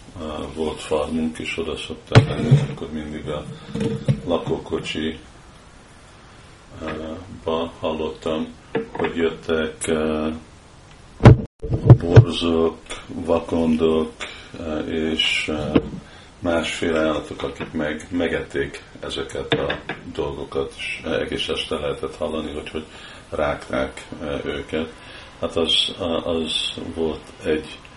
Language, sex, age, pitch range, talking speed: Hungarian, male, 50-69, 80-85 Hz, 80 wpm